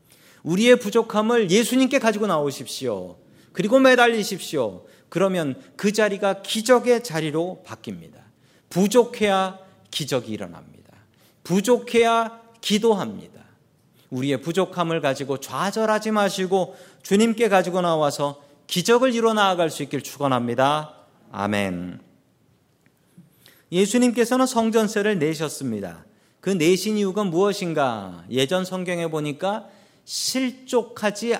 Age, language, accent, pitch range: 40-59, Korean, native, 150-220 Hz